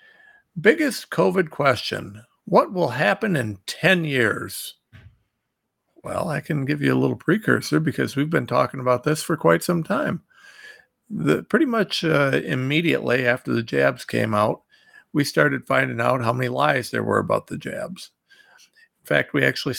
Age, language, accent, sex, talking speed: 50-69, English, American, male, 160 wpm